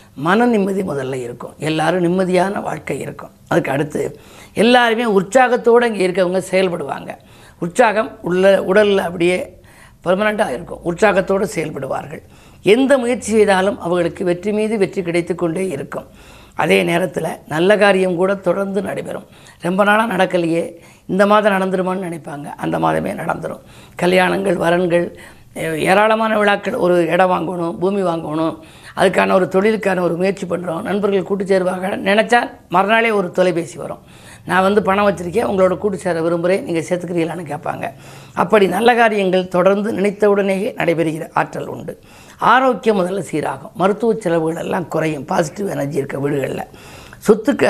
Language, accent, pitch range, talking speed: Tamil, native, 175-205 Hz, 130 wpm